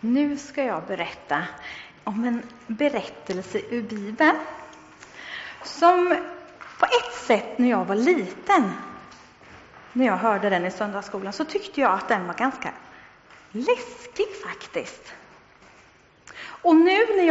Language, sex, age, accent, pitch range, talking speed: Swedish, female, 40-59, native, 220-315 Hz, 120 wpm